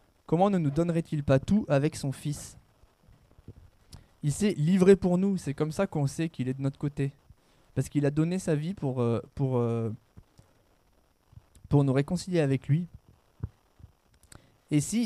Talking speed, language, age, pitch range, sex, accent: 155 wpm, French, 20-39, 130-180 Hz, male, French